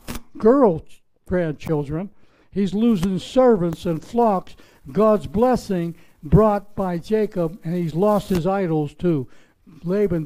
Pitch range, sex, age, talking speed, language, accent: 155-210 Hz, male, 60-79, 110 wpm, English, American